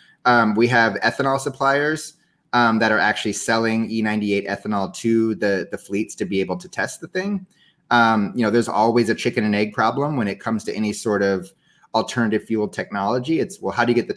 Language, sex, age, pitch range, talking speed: English, male, 30-49, 100-125 Hz, 210 wpm